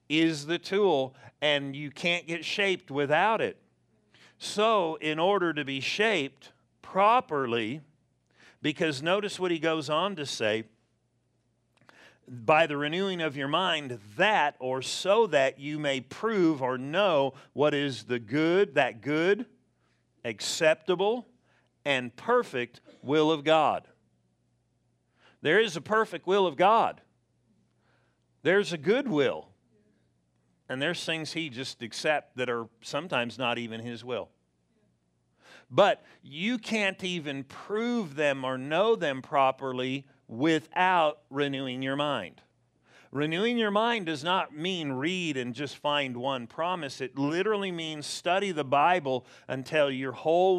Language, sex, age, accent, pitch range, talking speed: English, male, 50-69, American, 125-170 Hz, 130 wpm